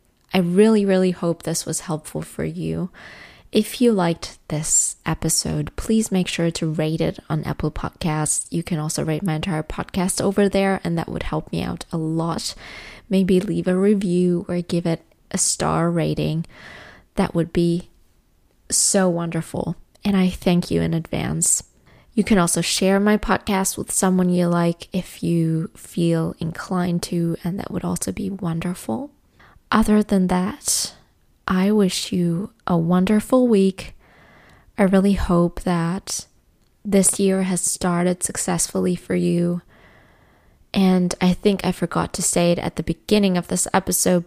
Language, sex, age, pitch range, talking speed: English, female, 20-39, 170-195 Hz, 155 wpm